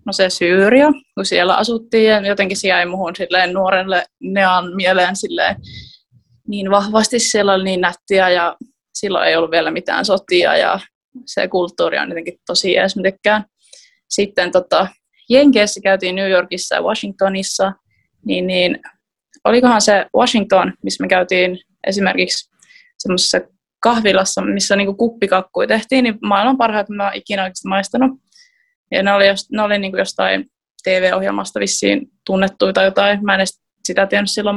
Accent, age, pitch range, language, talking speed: native, 20-39, 185-215 Hz, Finnish, 140 wpm